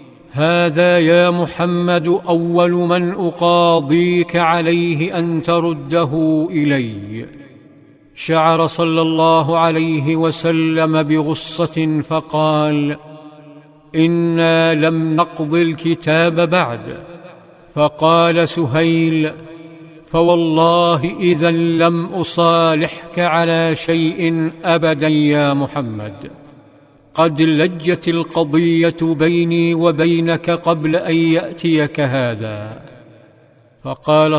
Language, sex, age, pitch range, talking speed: Arabic, male, 50-69, 150-170 Hz, 75 wpm